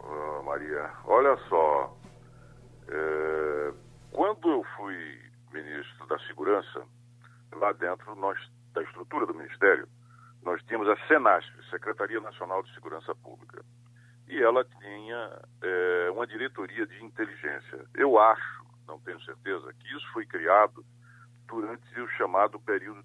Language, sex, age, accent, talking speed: Portuguese, male, 60-79, Brazilian, 125 wpm